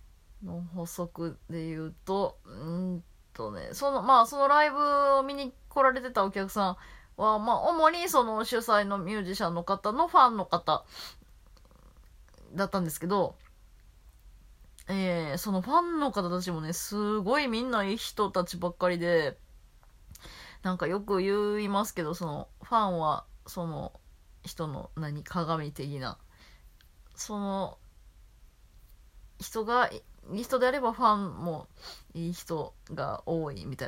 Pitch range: 135-225 Hz